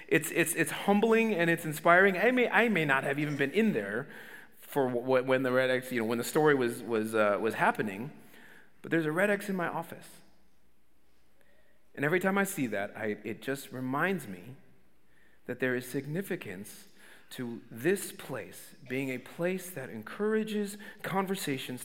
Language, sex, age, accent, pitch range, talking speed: English, male, 40-59, American, 130-195 Hz, 180 wpm